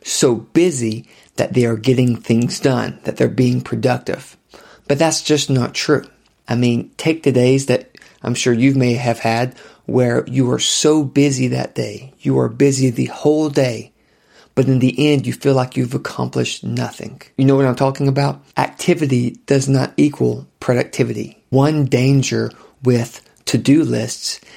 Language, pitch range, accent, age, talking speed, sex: English, 120-140 Hz, American, 40-59, 165 wpm, male